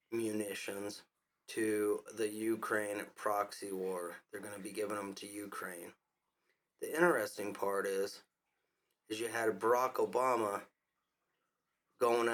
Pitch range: 105-125 Hz